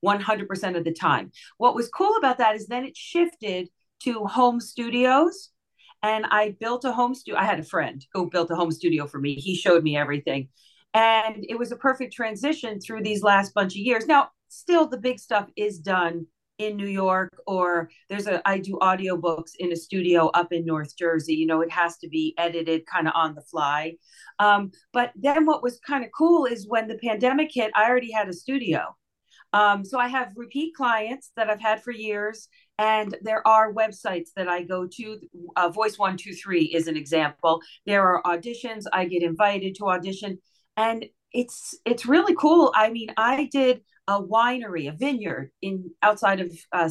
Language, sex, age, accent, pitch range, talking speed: English, female, 40-59, American, 175-240 Hz, 200 wpm